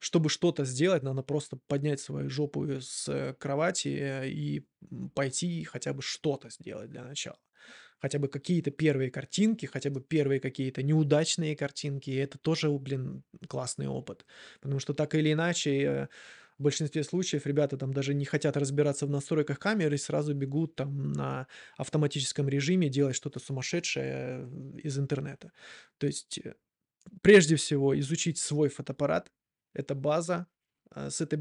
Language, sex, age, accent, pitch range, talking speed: Russian, male, 20-39, native, 135-155 Hz, 140 wpm